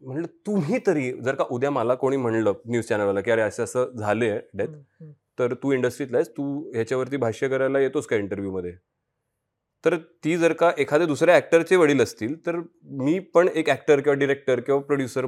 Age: 30-49